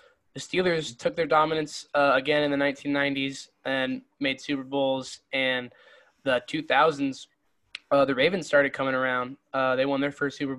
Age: 10-29